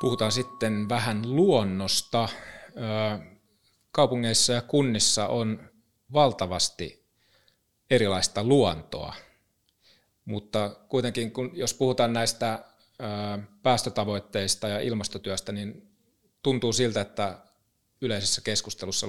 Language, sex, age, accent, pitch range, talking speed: Finnish, male, 30-49, native, 95-115 Hz, 80 wpm